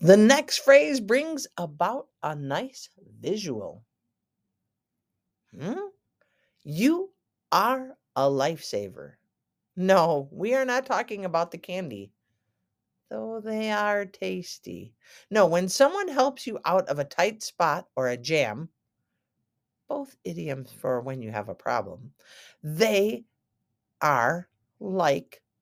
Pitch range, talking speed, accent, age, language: 140-215 Hz, 115 wpm, American, 50-69, English